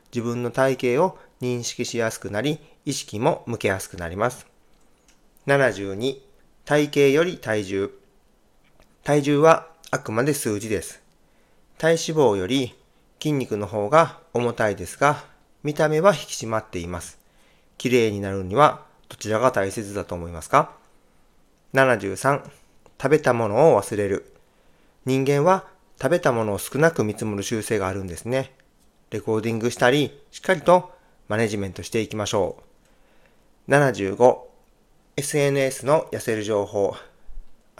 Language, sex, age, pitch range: Japanese, male, 40-59, 105-145 Hz